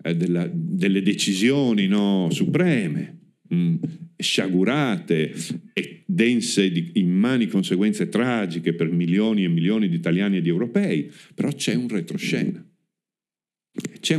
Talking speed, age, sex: 105 wpm, 50-69, male